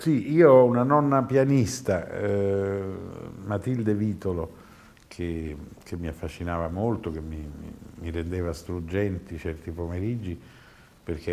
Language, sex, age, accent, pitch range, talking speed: Italian, male, 50-69, native, 85-115 Hz, 115 wpm